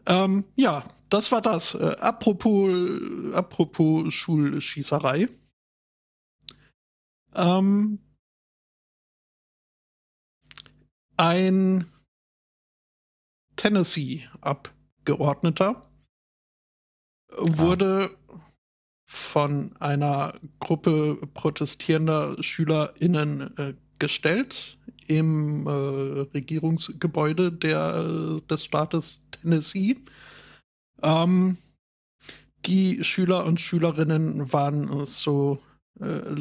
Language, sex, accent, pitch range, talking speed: German, male, German, 145-180 Hz, 60 wpm